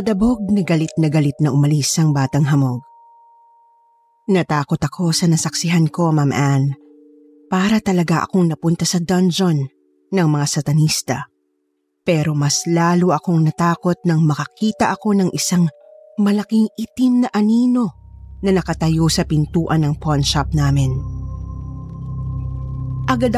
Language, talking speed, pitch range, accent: Filipino, 120 wpm, 145-195 Hz, native